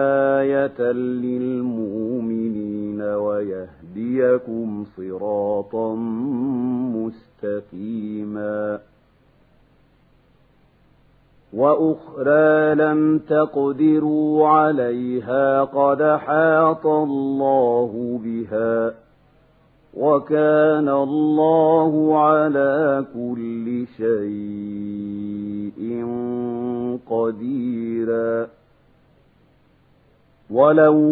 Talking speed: 35 wpm